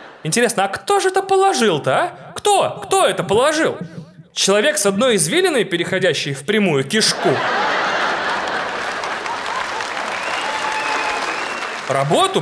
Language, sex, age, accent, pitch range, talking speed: Russian, male, 20-39, native, 145-240 Hz, 95 wpm